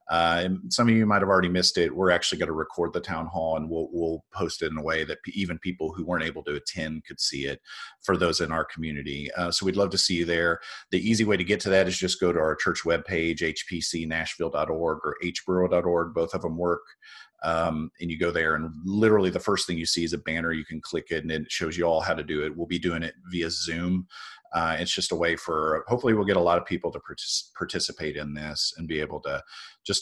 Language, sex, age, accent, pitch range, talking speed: English, male, 40-59, American, 80-95 Hz, 255 wpm